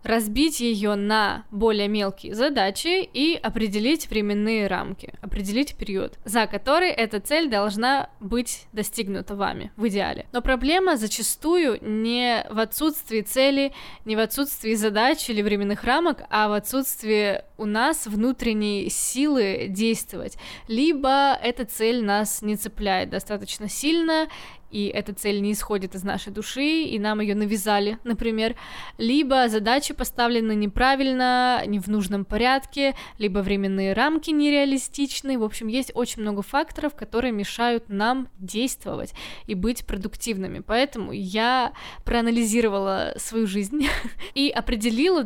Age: 20-39